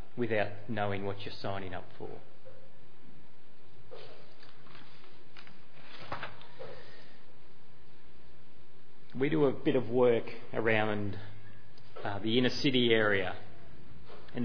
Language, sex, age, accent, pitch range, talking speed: English, male, 40-59, Australian, 110-135 Hz, 85 wpm